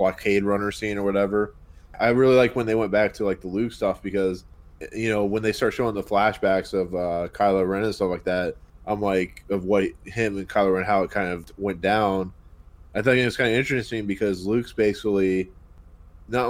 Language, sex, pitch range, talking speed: English, male, 95-110 Hz, 210 wpm